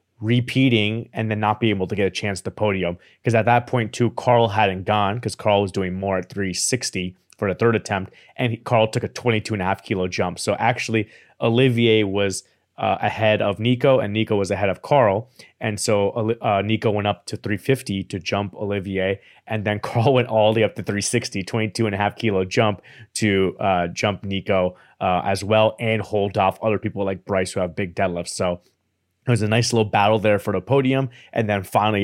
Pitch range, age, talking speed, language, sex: 95-115 Hz, 30-49, 215 wpm, English, male